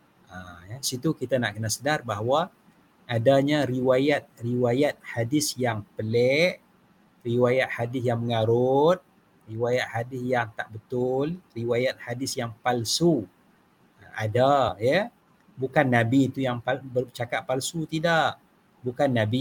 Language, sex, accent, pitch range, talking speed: English, male, Indonesian, 120-150 Hz, 115 wpm